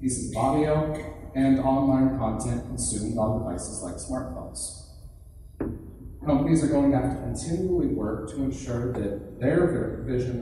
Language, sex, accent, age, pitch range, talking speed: English, male, American, 40-59, 95-140 Hz, 145 wpm